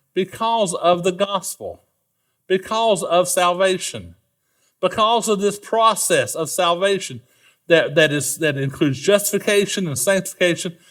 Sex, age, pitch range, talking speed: male, 50-69, 150-225 Hz, 115 wpm